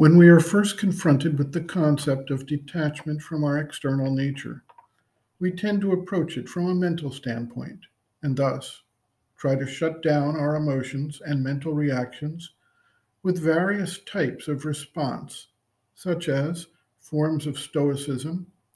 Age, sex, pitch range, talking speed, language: 50-69, male, 135-165 Hz, 140 wpm, English